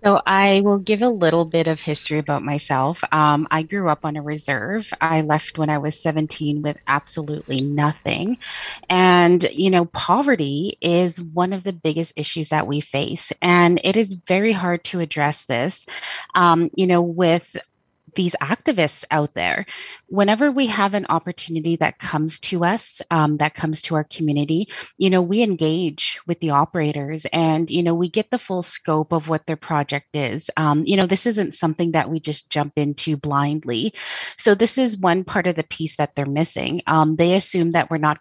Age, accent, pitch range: 30-49, American, 150-180 Hz